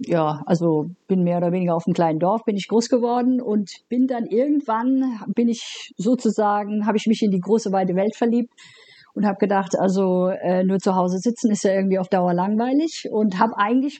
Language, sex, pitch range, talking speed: German, female, 180-225 Hz, 205 wpm